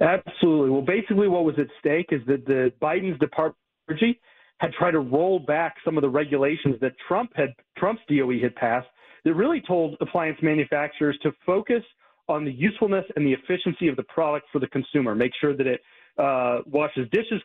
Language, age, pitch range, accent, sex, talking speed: English, 40-59, 140-180 Hz, American, male, 185 wpm